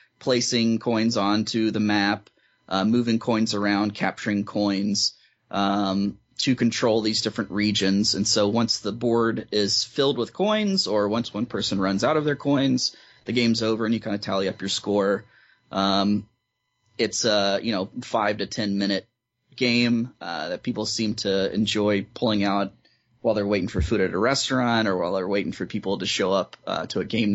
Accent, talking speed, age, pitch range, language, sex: American, 180 wpm, 20-39, 105-120 Hz, English, male